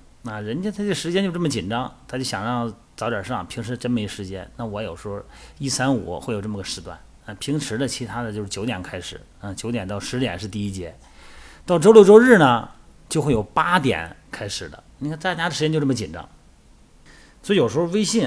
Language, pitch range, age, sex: Chinese, 100-135 Hz, 30-49, male